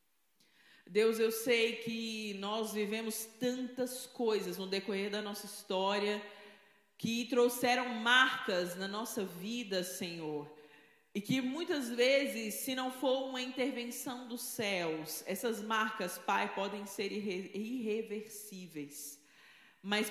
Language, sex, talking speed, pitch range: Portuguese, female, 115 wpm, 195-245 Hz